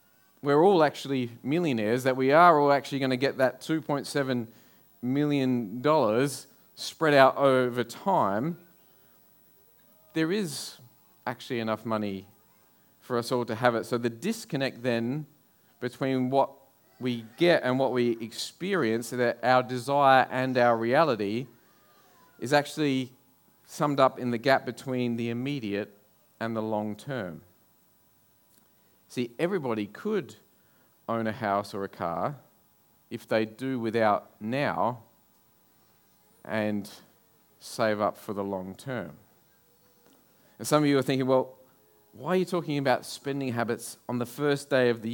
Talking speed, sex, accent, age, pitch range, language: 140 wpm, male, Australian, 40-59, 115-145 Hz, English